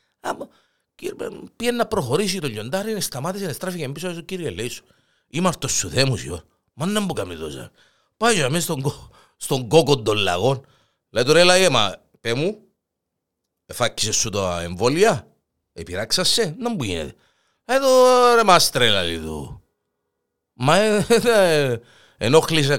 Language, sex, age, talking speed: Greek, male, 50-69, 105 wpm